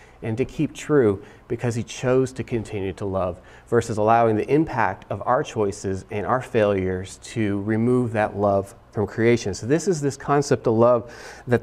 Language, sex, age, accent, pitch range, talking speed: English, male, 40-59, American, 105-135 Hz, 180 wpm